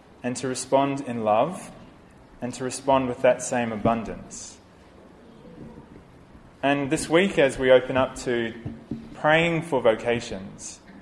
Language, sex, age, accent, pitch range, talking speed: English, male, 20-39, Australian, 115-140 Hz, 125 wpm